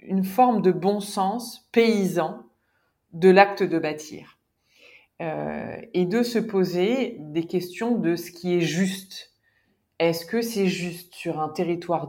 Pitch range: 155-195 Hz